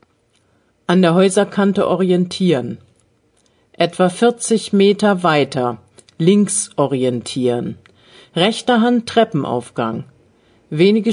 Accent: German